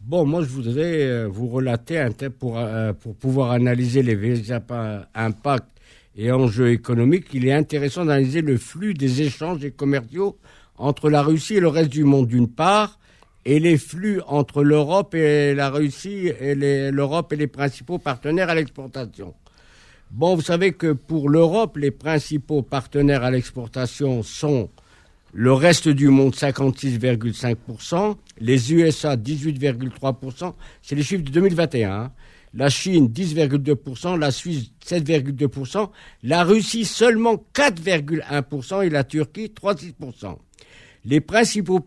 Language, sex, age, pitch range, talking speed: French, male, 50-69, 125-165 Hz, 135 wpm